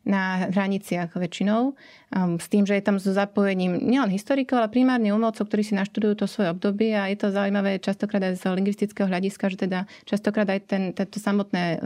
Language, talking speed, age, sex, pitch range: Slovak, 190 wpm, 30-49, female, 190-210 Hz